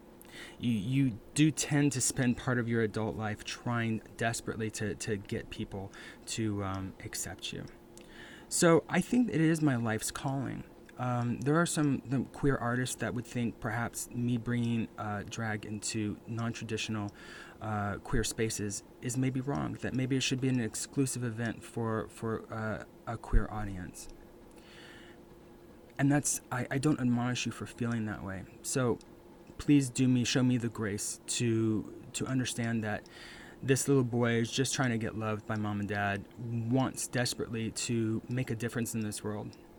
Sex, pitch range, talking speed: male, 105-125 Hz, 170 wpm